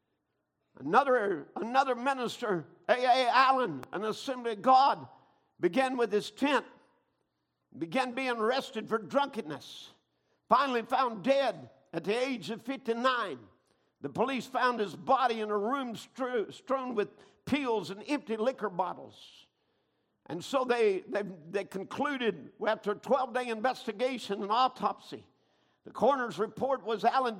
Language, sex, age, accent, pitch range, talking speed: English, male, 50-69, American, 210-265 Hz, 130 wpm